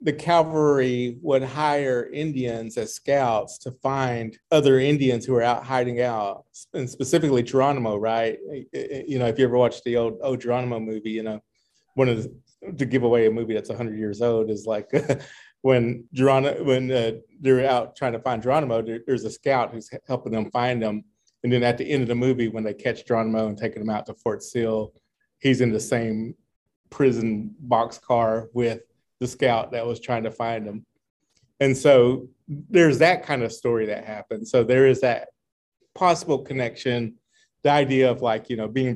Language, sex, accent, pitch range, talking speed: English, male, American, 110-130 Hz, 185 wpm